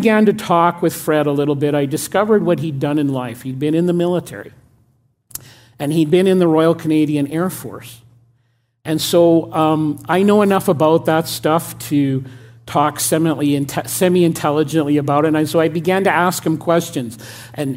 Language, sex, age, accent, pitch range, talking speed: English, male, 50-69, American, 145-170 Hz, 170 wpm